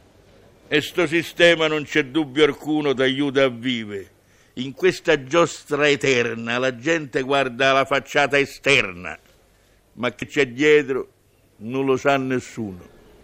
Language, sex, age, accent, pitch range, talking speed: Italian, male, 60-79, native, 135-185 Hz, 130 wpm